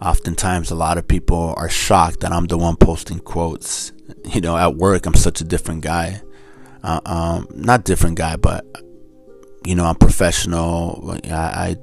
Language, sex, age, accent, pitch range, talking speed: English, male, 30-49, American, 85-95 Hz, 165 wpm